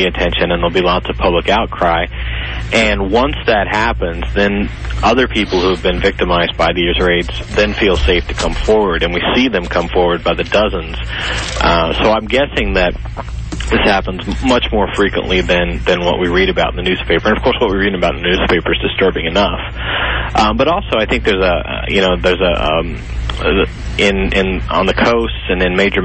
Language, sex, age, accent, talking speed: English, male, 40-59, American, 205 wpm